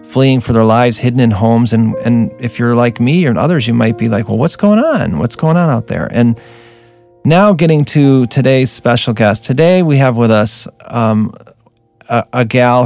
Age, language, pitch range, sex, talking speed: 40-59, English, 105-130 Hz, male, 205 wpm